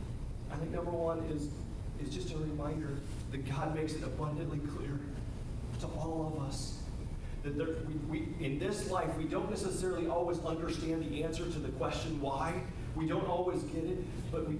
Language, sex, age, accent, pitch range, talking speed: English, male, 40-59, American, 130-160 Hz, 180 wpm